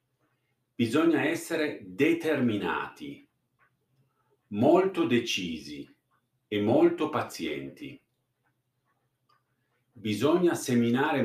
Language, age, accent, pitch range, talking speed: Italian, 50-69, native, 120-150 Hz, 55 wpm